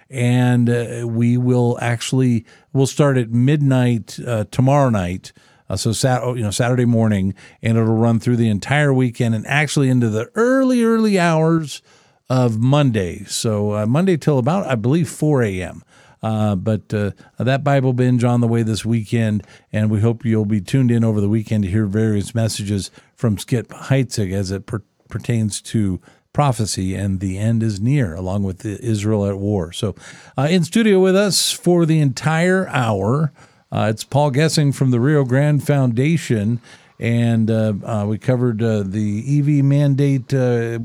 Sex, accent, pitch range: male, American, 110-135 Hz